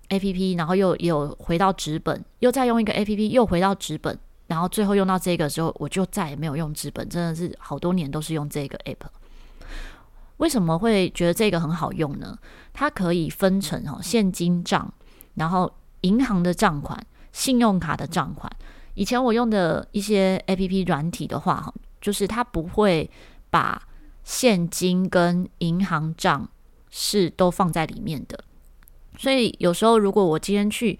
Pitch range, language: 165-205 Hz, Chinese